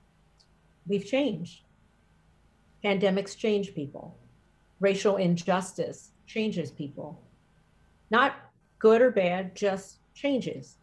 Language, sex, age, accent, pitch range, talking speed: English, female, 50-69, American, 185-220 Hz, 85 wpm